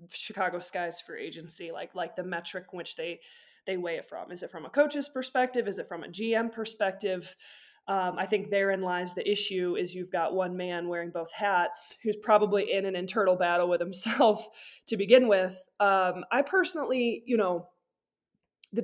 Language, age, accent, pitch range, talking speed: English, 20-39, American, 180-220 Hz, 185 wpm